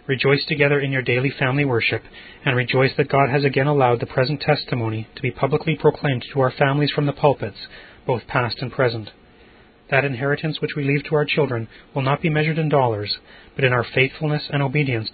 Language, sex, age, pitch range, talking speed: English, male, 30-49, 120-145 Hz, 200 wpm